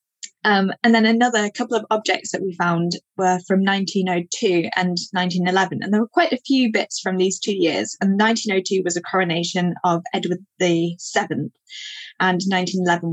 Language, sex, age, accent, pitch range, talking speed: English, female, 10-29, British, 180-220 Hz, 170 wpm